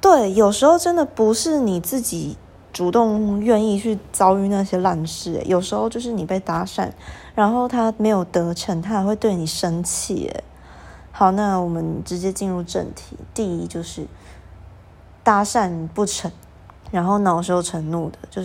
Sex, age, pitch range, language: female, 20-39, 165-205 Hz, Chinese